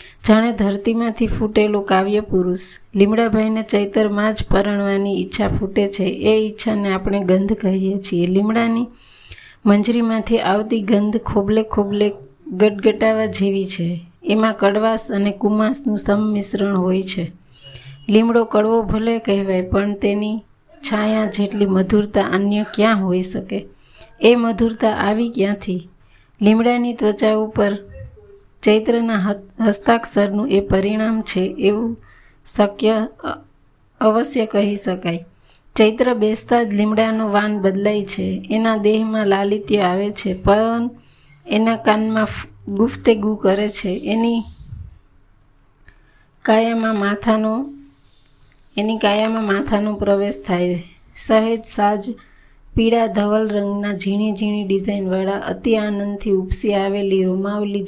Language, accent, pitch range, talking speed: Gujarati, native, 195-220 Hz, 105 wpm